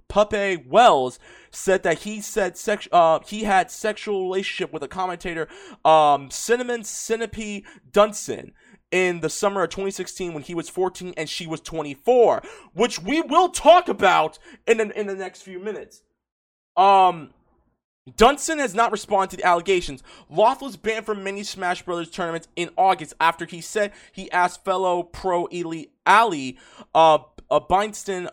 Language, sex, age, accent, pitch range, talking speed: English, male, 20-39, American, 160-210 Hz, 160 wpm